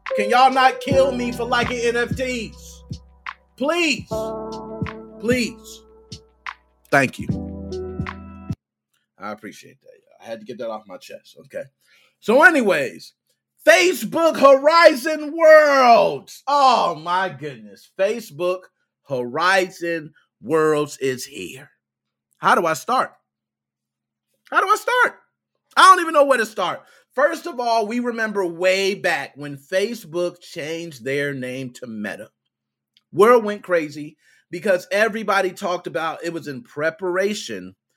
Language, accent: English, American